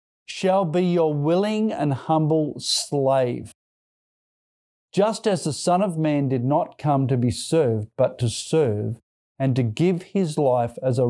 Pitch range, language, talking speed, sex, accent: 125-180 Hz, English, 155 wpm, male, Australian